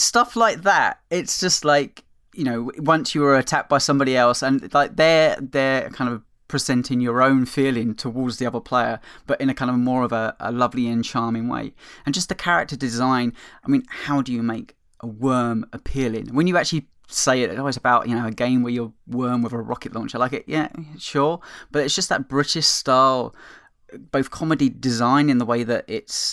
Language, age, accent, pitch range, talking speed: English, 20-39, British, 115-135 Hz, 215 wpm